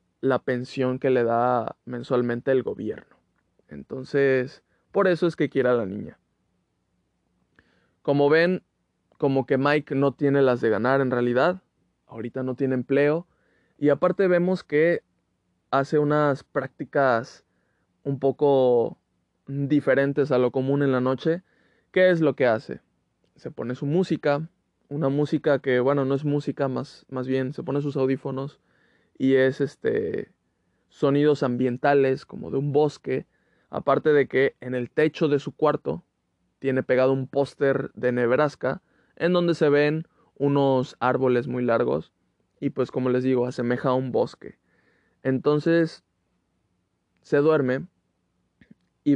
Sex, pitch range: male, 125-145 Hz